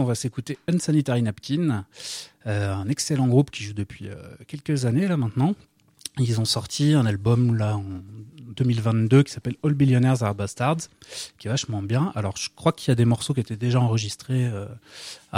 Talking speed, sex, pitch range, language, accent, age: 185 wpm, male, 110-140 Hz, French, French, 30-49